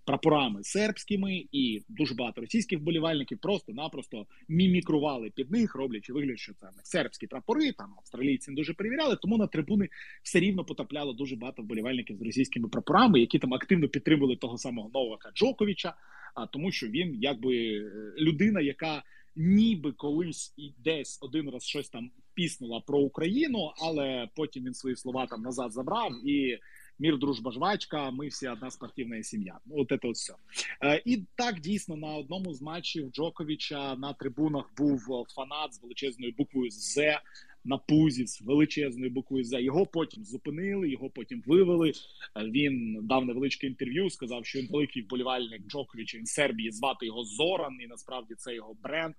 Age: 30-49